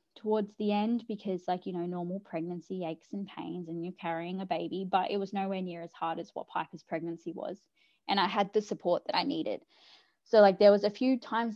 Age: 10-29